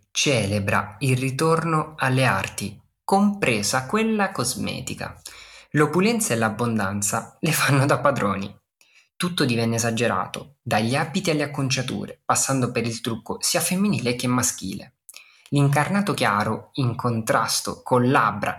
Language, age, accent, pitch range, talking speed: Italian, 20-39, native, 115-165 Hz, 115 wpm